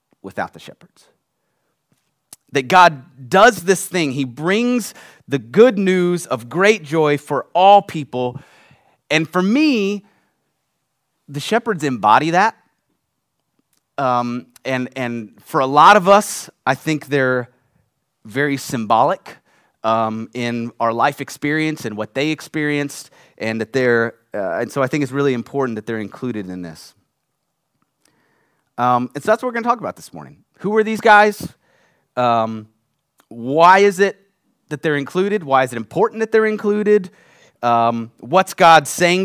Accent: American